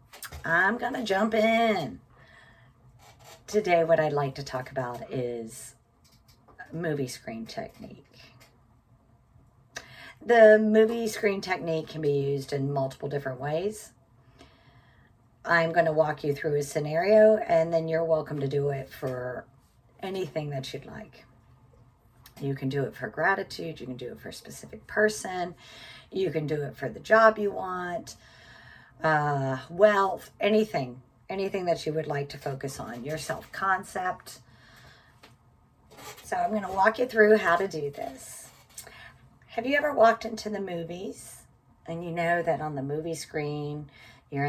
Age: 40-59